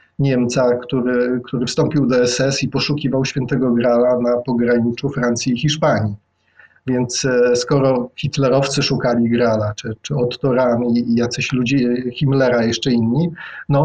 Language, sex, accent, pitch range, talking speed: Polish, male, native, 125-145 Hz, 135 wpm